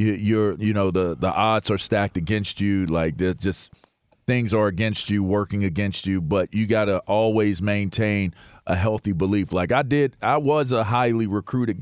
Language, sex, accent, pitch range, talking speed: English, male, American, 105-140 Hz, 185 wpm